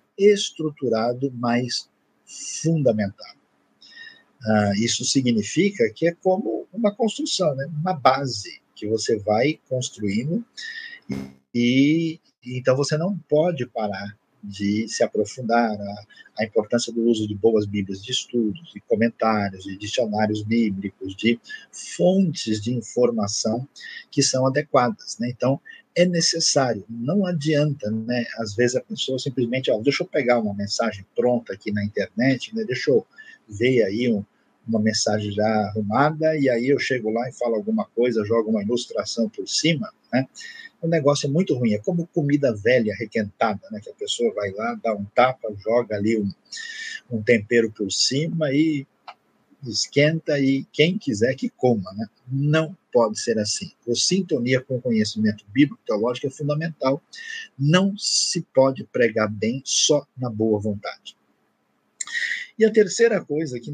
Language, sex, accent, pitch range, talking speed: Portuguese, male, Brazilian, 110-170 Hz, 150 wpm